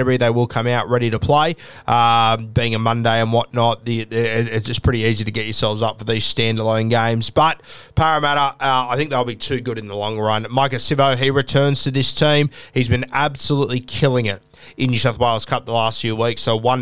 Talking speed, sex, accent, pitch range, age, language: 220 wpm, male, Australian, 110-130 Hz, 20-39, English